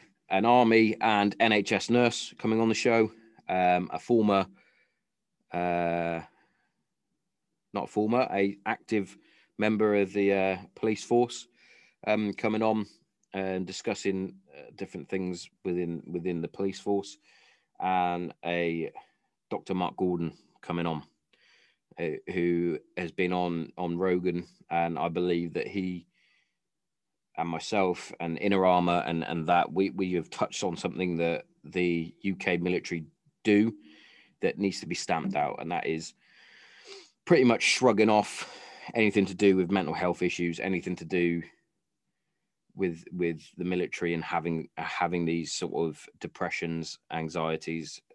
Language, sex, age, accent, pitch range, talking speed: English, male, 30-49, British, 85-105 Hz, 135 wpm